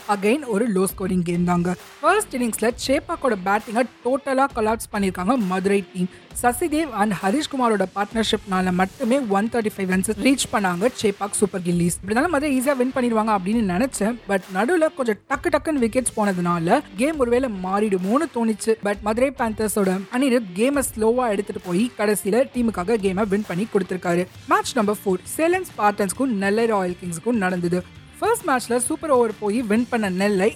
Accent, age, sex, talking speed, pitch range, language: native, 20-39, female, 70 wpm, 195-250 Hz, Tamil